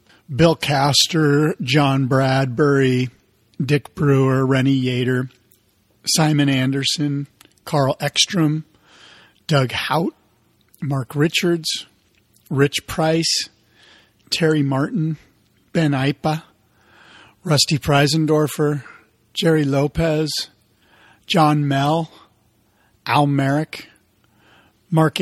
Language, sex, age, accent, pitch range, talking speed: English, male, 50-69, American, 130-160 Hz, 75 wpm